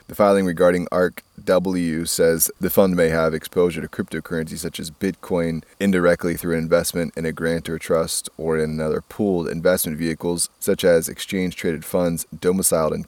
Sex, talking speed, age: male, 160 wpm, 20-39